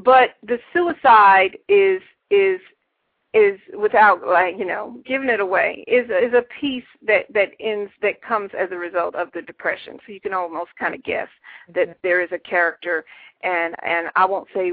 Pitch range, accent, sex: 180-235 Hz, American, female